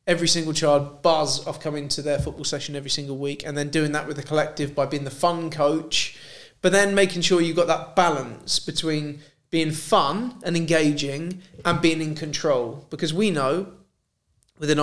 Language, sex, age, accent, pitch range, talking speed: English, male, 30-49, British, 140-170 Hz, 185 wpm